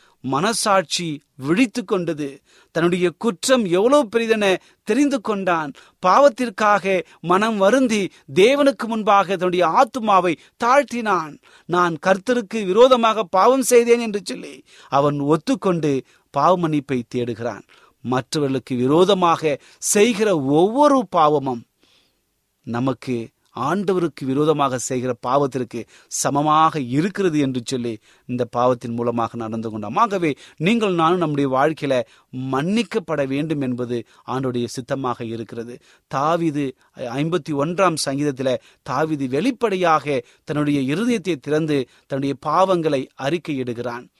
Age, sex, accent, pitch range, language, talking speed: 30-49, male, native, 135-200 Hz, Tamil, 95 wpm